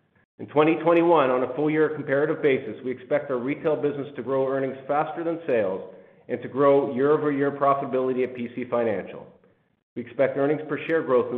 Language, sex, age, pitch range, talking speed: English, male, 50-69, 120-150 Hz, 175 wpm